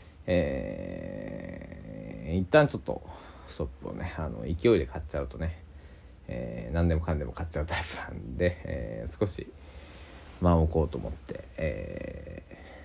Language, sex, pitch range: Japanese, male, 75-85 Hz